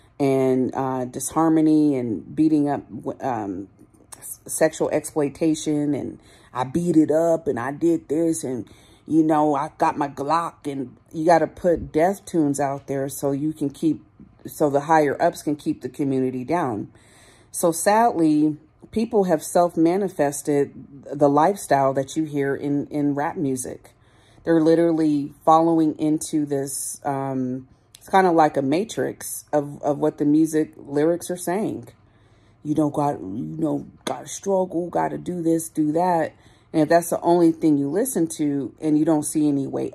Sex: female